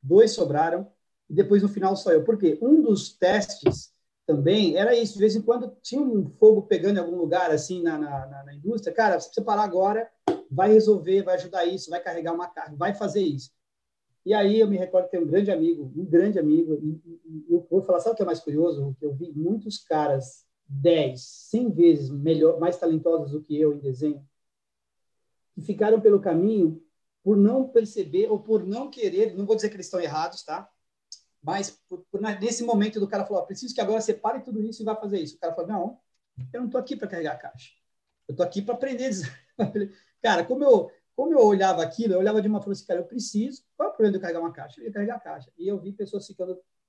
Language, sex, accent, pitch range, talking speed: Portuguese, male, Brazilian, 165-215 Hz, 230 wpm